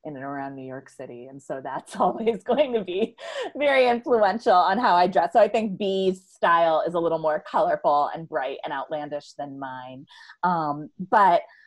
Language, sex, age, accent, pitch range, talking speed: English, female, 30-49, American, 145-185 Hz, 190 wpm